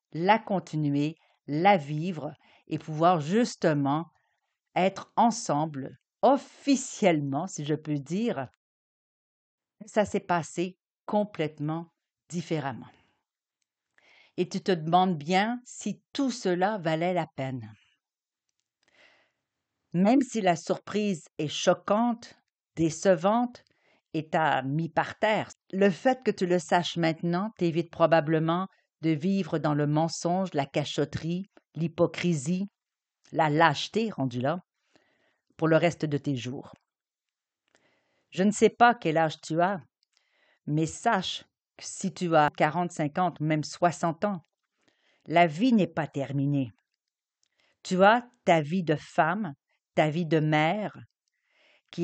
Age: 50-69